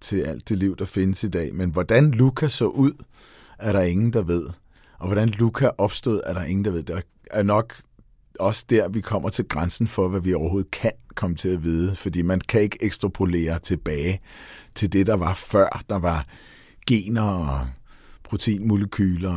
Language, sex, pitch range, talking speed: Danish, male, 90-115 Hz, 190 wpm